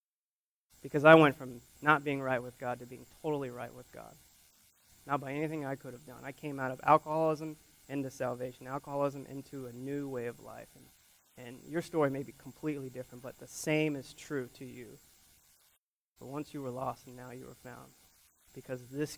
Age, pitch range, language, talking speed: 20-39, 125-155 Hz, English, 195 wpm